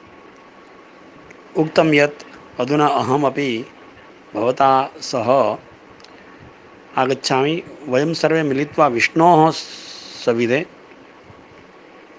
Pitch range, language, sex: 125-155 Hz, Malayalam, male